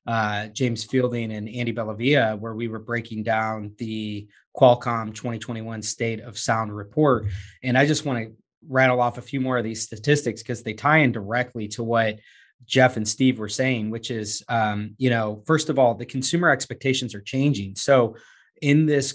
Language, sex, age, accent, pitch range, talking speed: English, male, 20-39, American, 115-135 Hz, 185 wpm